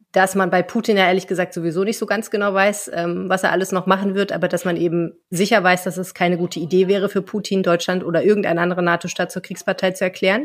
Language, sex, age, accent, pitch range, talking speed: German, female, 30-49, German, 175-200 Hz, 240 wpm